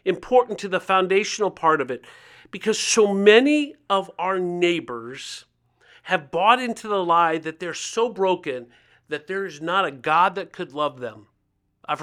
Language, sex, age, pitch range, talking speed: English, male, 50-69, 135-195 Hz, 165 wpm